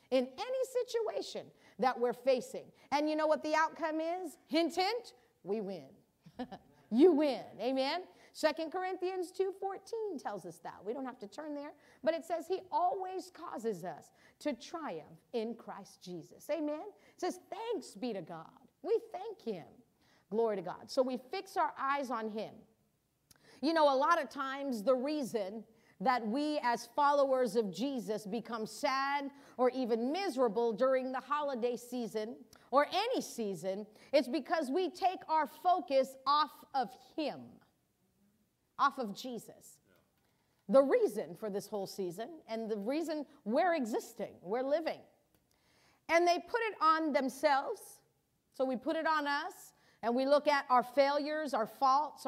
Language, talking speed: English, 155 wpm